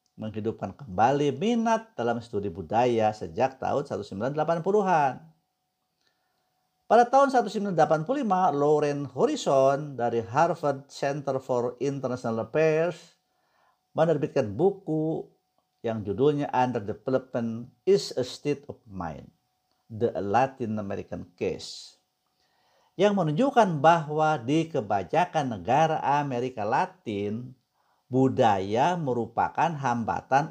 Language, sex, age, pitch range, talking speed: Indonesian, male, 50-69, 120-185 Hz, 90 wpm